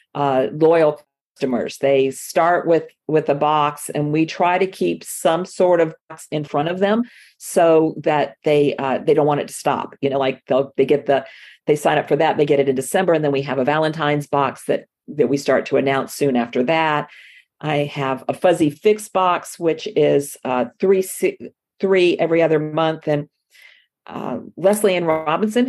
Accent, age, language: American, 50-69, English